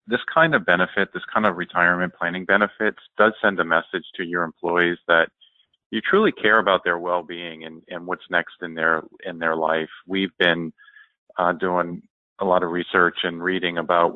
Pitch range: 85-95 Hz